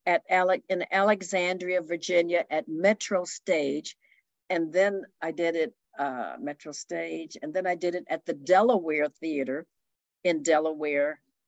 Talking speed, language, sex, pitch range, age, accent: 140 wpm, English, female, 155-195 Hz, 50-69, American